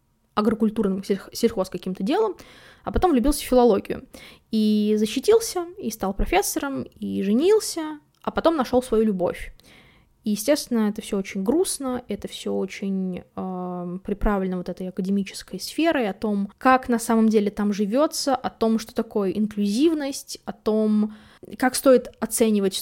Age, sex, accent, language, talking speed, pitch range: 20-39, female, native, Russian, 140 wpm, 200-255 Hz